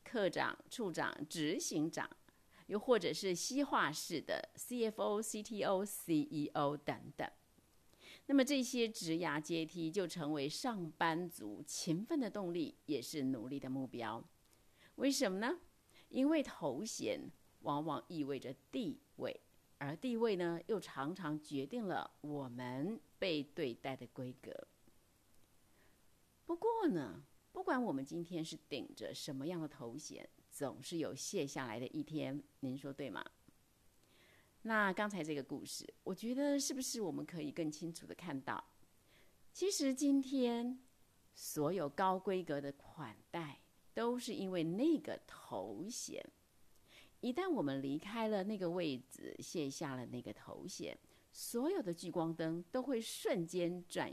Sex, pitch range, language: female, 145-235 Hz, Chinese